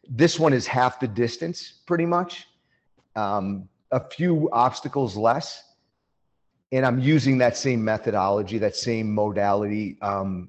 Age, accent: 40-59, American